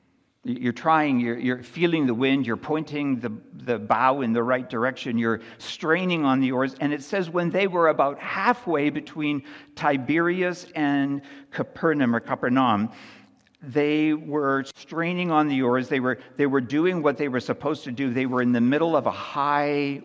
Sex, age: male, 60-79